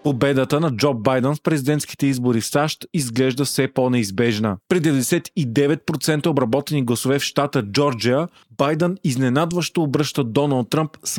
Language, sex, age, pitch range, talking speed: Bulgarian, male, 30-49, 125-155 Hz, 135 wpm